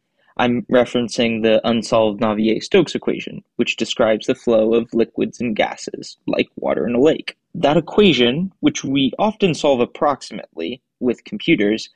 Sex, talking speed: male, 140 wpm